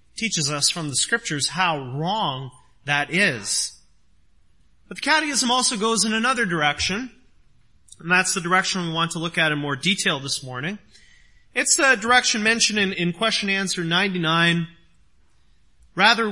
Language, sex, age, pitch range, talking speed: English, male, 30-49, 145-210 Hz, 150 wpm